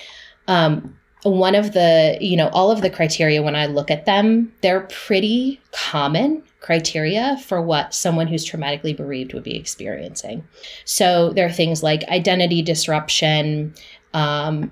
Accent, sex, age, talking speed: American, female, 30-49, 145 wpm